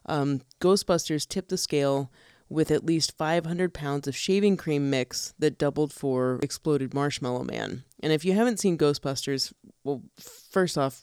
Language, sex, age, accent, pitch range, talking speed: English, female, 30-49, American, 135-175 Hz, 160 wpm